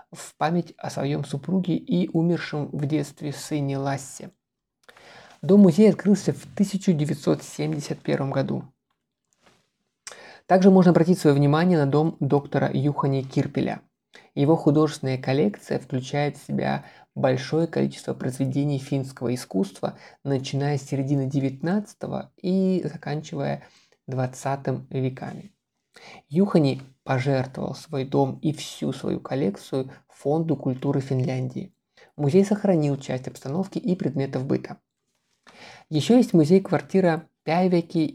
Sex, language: male, Russian